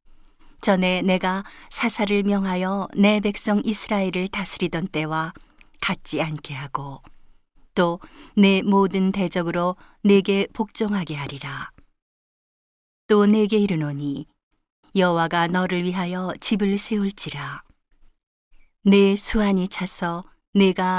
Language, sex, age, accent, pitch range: Korean, female, 40-59, native, 170-200 Hz